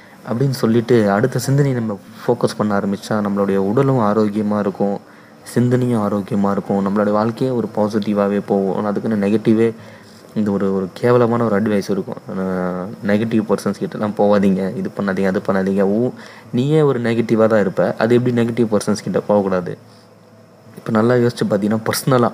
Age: 20-39